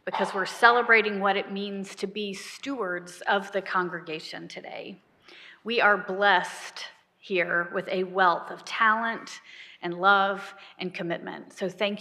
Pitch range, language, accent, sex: 185-230 Hz, English, American, female